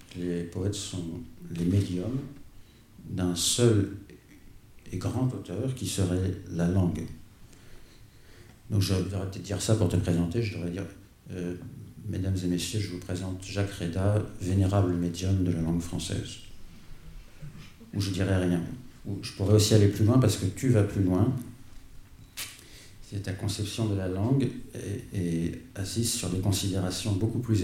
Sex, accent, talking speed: male, French, 160 wpm